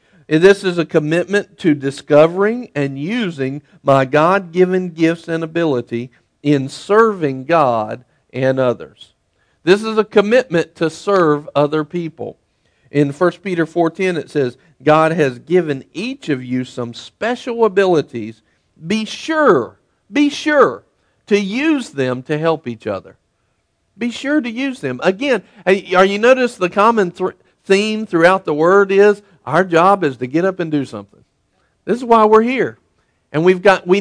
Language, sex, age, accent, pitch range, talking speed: English, male, 50-69, American, 140-190 Hz, 155 wpm